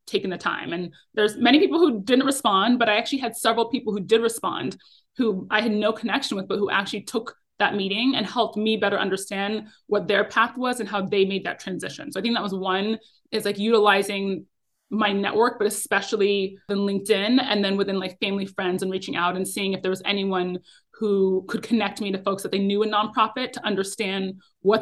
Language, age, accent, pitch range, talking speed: English, 20-39, American, 195-225 Hz, 220 wpm